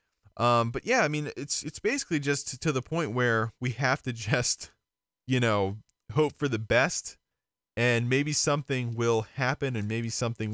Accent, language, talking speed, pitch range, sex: American, English, 175 wpm, 105-140 Hz, male